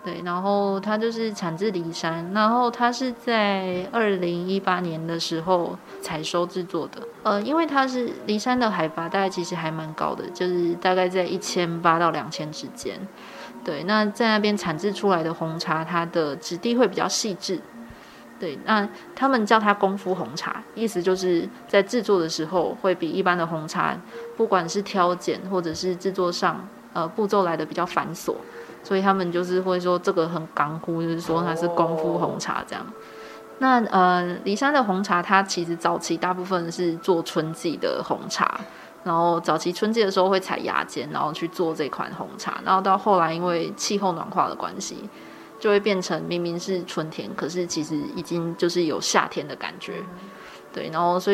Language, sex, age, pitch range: Chinese, female, 20-39, 170-205 Hz